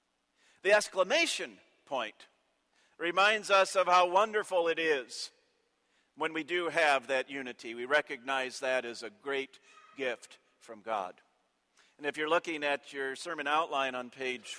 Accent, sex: American, male